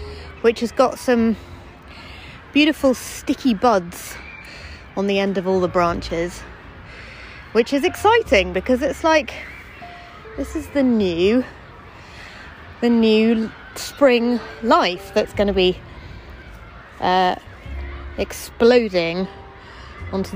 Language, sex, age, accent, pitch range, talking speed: English, female, 30-49, British, 180-240 Hz, 105 wpm